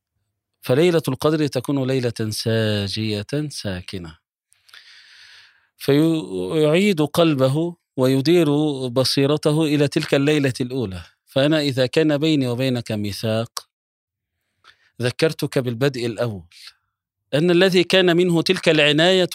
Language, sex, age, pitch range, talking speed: Arabic, male, 40-59, 115-150 Hz, 90 wpm